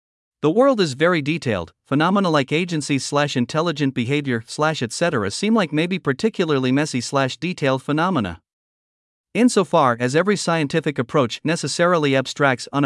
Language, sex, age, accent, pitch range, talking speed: English, male, 50-69, American, 130-170 Hz, 115 wpm